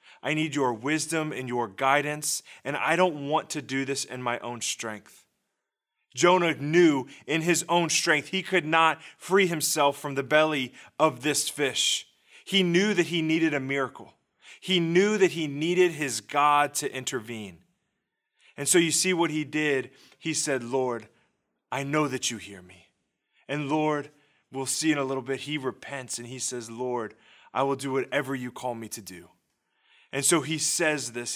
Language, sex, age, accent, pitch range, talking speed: English, male, 20-39, American, 120-150 Hz, 180 wpm